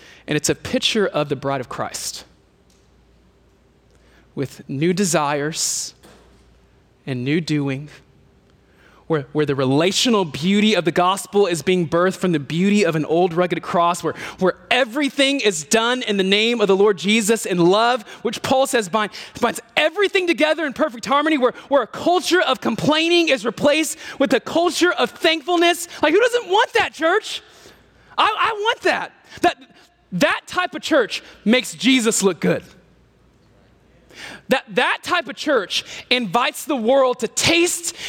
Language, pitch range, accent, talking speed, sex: English, 190-320 Hz, American, 160 wpm, male